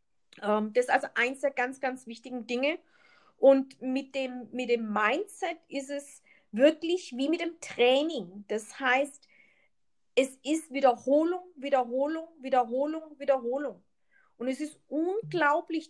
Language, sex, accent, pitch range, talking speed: German, female, German, 245-300 Hz, 125 wpm